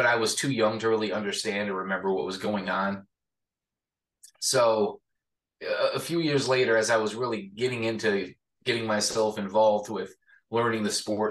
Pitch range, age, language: 105-135 Hz, 20-39, English